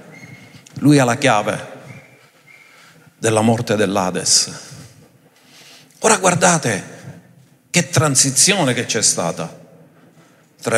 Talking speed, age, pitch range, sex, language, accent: 85 wpm, 50-69, 120-165 Hz, male, Italian, native